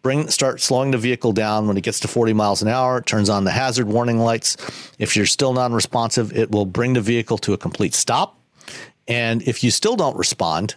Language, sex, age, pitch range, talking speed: English, male, 50-69, 105-125 Hz, 225 wpm